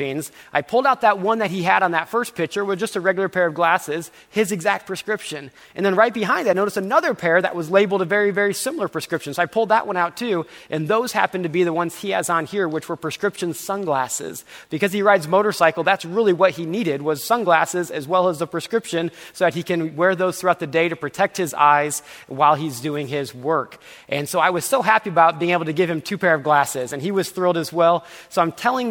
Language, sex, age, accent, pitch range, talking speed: English, male, 30-49, American, 155-200 Hz, 250 wpm